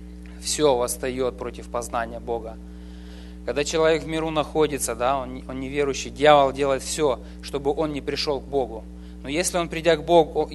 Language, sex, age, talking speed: English, male, 20-39, 170 wpm